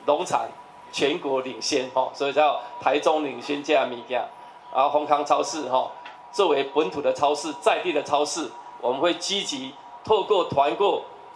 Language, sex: Chinese, male